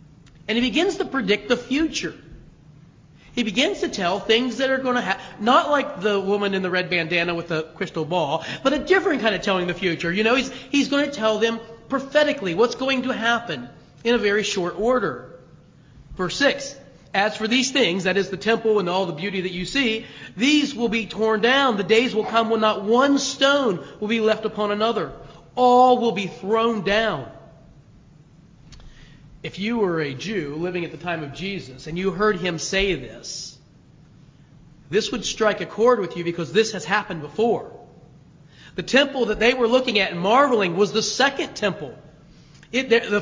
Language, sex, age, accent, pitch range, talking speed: English, male, 40-59, American, 170-230 Hz, 195 wpm